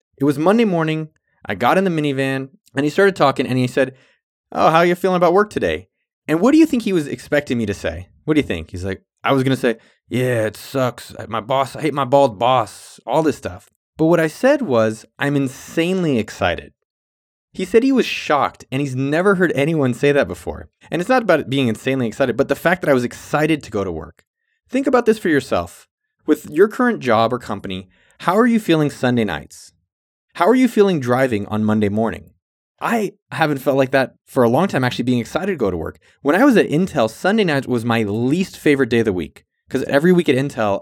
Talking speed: 230 wpm